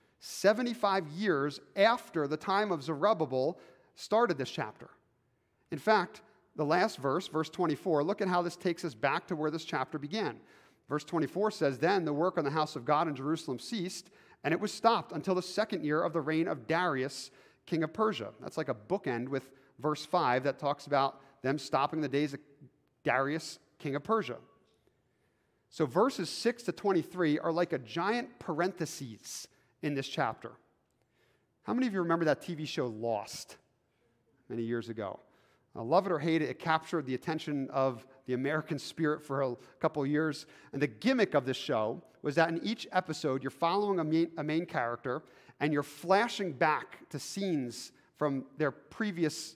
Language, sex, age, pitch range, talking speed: English, male, 50-69, 140-180 Hz, 180 wpm